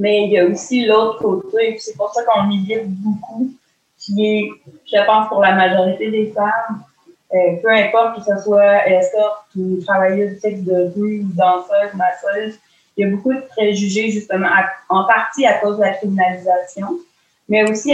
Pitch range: 185-210 Hz